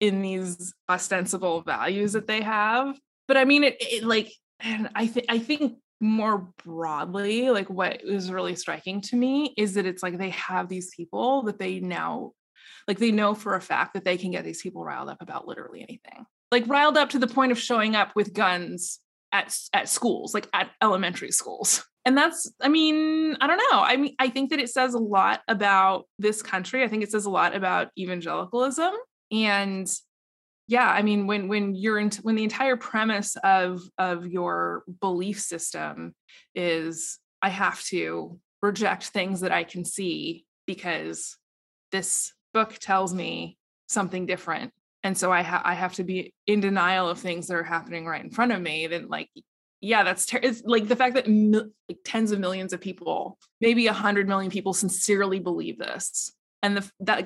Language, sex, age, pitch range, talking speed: English, female, 20-39, 185-235 Hz, 190 wpm